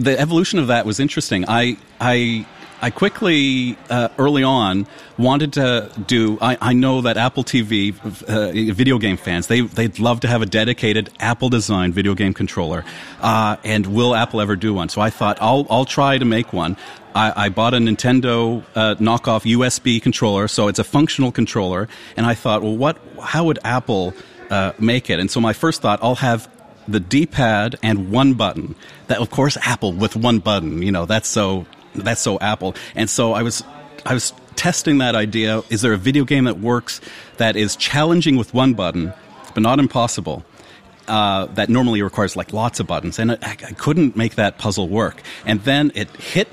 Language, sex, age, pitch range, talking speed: English, male, 40-59, 105-125 Hz, 190 wpm